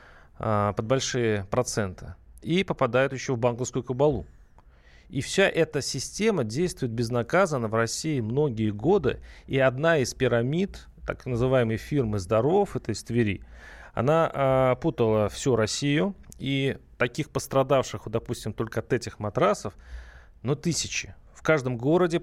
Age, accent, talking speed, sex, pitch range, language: 30-49, native, 135 wpm, male, 110-145 Hz, Russian